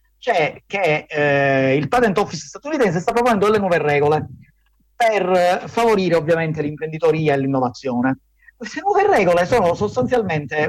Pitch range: 140-210 Hz